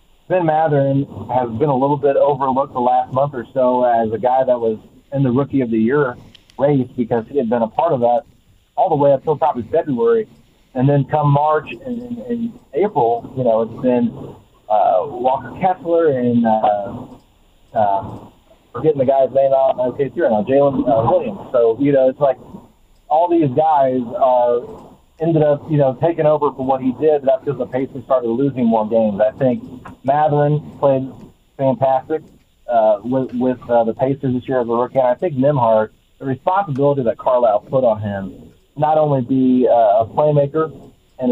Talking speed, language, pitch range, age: 185 wpm, English, 120-145 Hz, 30-49